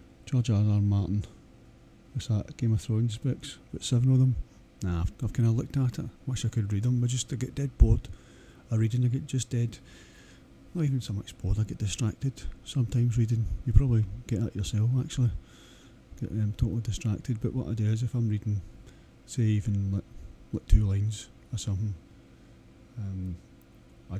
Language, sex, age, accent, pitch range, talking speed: English, male, 40-59, British, 105-120 Hz, 195 wpm